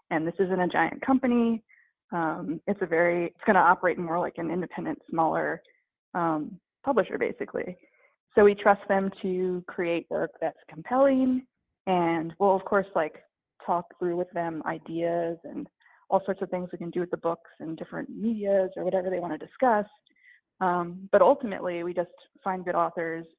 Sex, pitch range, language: female, 170-210 Hz, English